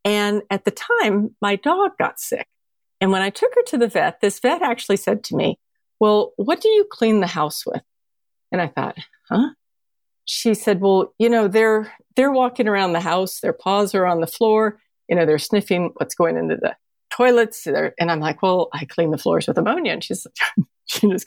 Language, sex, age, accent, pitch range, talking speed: English, female, 50-69, American, 185-245 Hz, 205 wpm